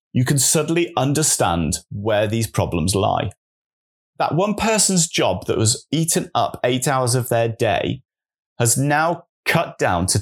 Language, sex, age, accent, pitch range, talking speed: English, male, 30-49, British, 100-145 Hz, 155 wpm